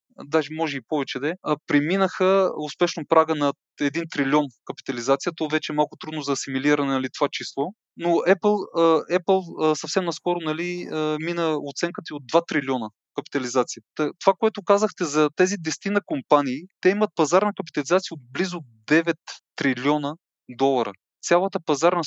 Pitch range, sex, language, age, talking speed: 150-180 Hz, male, Bulgarian, 20-39, 145 wpm